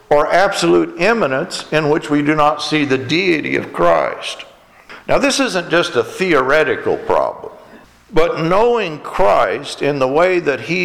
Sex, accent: male, American